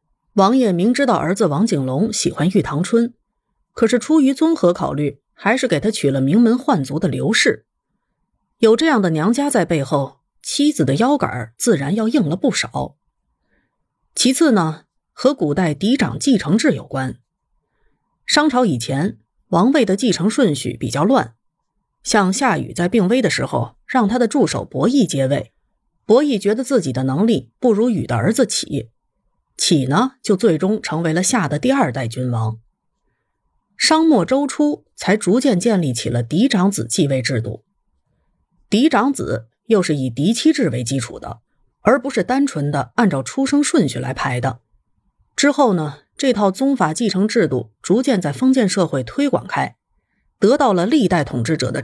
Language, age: Chinese, 30-49